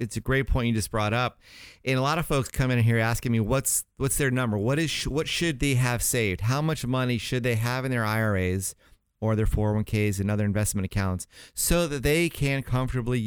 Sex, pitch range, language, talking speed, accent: male, 105-125 Hz, English, 225 wpm, American